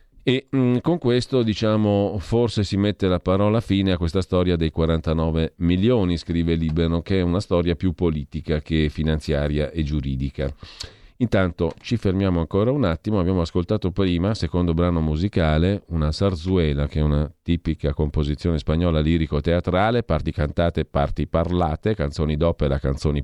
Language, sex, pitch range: Italian, male, 80-95 Hz